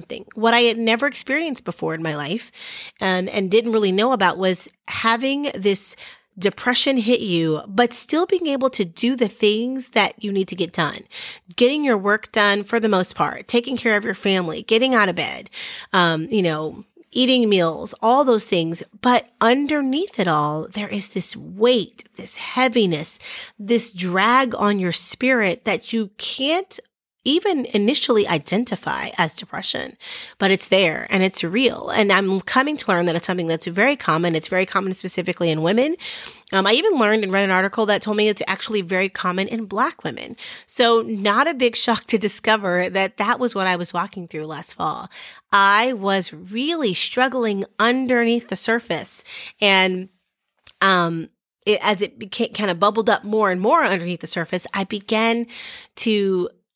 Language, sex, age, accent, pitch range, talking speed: English, female, 30-49, American, 185-240 Hz, 180 wpm